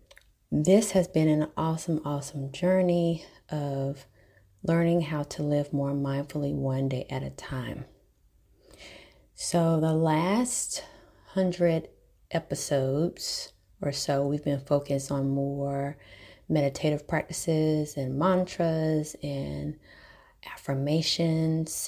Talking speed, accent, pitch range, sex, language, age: 100 wpm, American, 140-160 Hz, female, English, 30-49